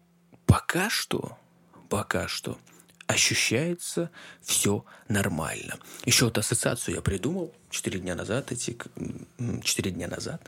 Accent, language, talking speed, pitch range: native, Russian, 110 wpm, 95-125 Hz